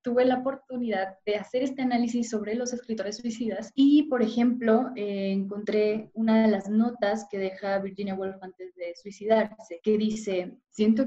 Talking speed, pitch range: 165 wpm, 180-220 Hz